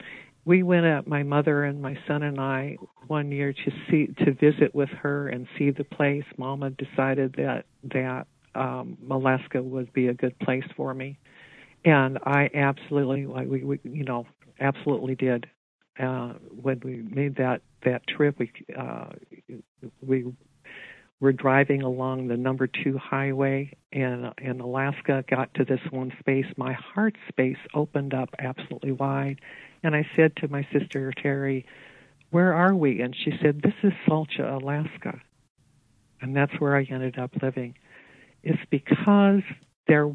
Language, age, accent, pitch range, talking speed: English, 60-79, American, 130-145 Hz, 155 wpm